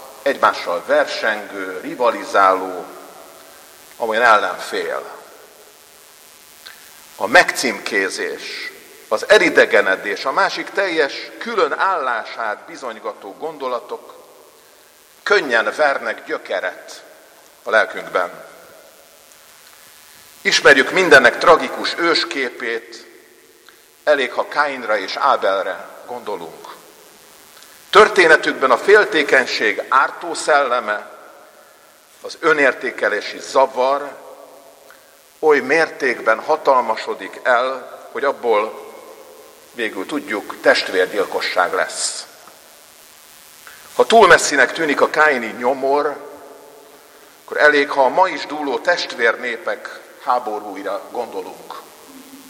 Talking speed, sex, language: 75 wpm, male, Hungarian